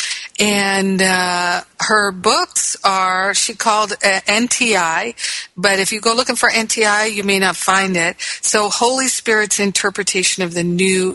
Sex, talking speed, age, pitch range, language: female, 150 wpm, 50-69, 180-205 Hz, English